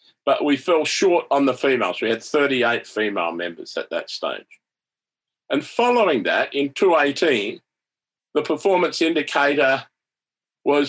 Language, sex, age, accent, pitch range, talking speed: English, male, 50-69, Australian, 120-195 Hz, 130 wpm